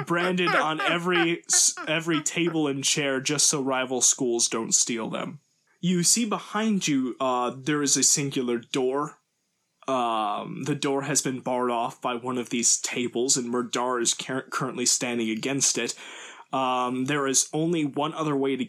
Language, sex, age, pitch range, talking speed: English, male, 20-39, 125-160 Hz, 165 wpm